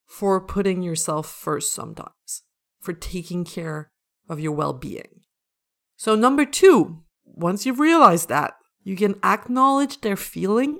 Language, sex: English, female